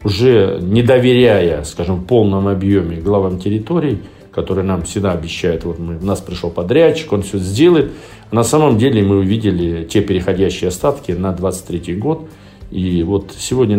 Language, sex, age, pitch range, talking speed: Russian, male, 50-69, 95-115 Hz, 155 wpm